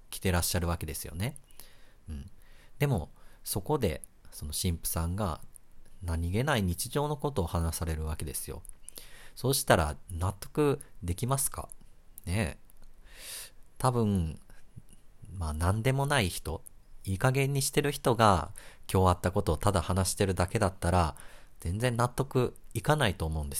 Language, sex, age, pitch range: Japanese, male, 40-59, 85-115 Hz